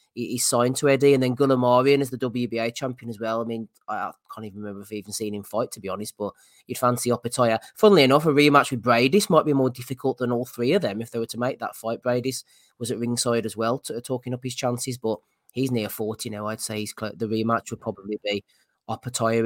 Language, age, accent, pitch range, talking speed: English, 20-39, British, 115-130 Hz, 235 wpm